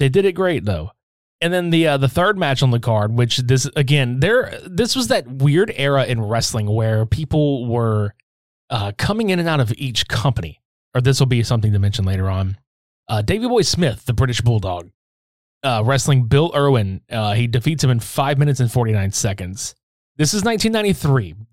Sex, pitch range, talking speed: male, 110-145 Hz, 195 wpm